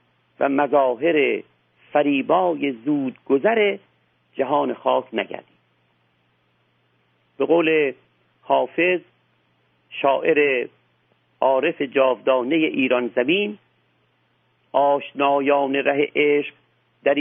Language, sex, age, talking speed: Persian, male, 50-69, 70 wpm